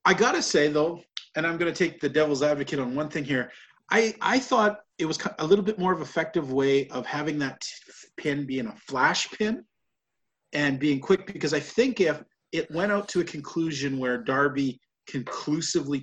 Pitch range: 130-160 Hz